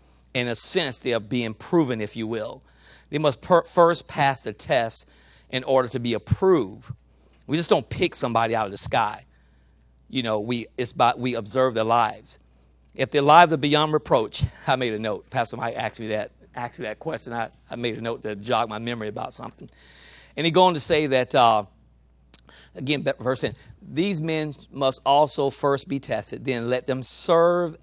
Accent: American